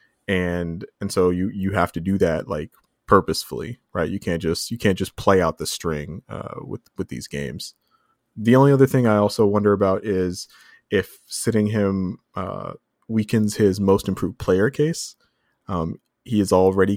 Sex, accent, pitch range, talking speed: male, American, 85-100 Hz, 175 wpm